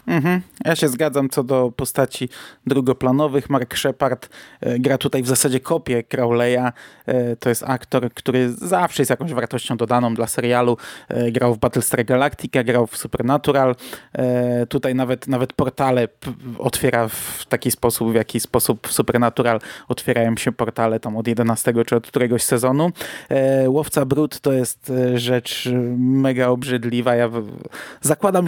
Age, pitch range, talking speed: 20-39, 120-130 Hz, 145 wpm